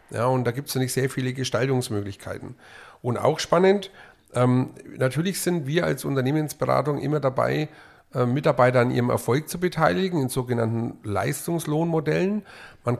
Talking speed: 135 wpm